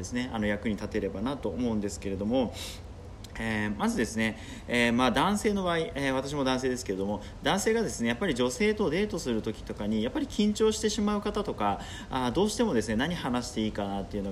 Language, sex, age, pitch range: Japanese, male, 30-49, 105-150 Hz